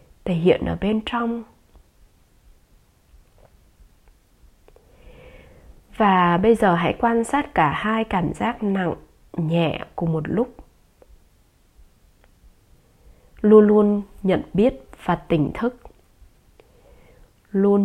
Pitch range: 175-235 Hz